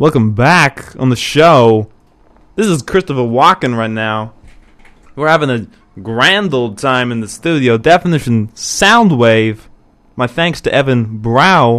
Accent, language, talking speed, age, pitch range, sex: American, English, 135 wpm, 20-39, 110-155 Hz, male